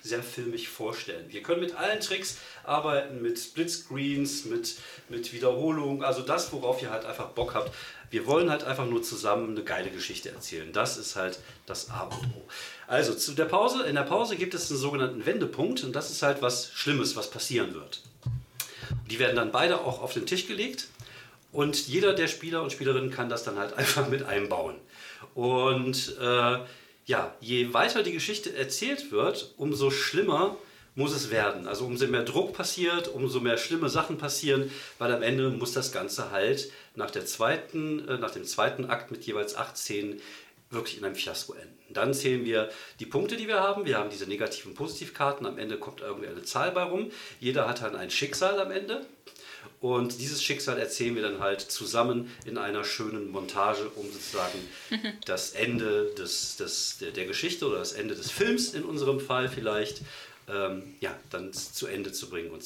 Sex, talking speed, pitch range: male, 185 wpm, 120-175 Hz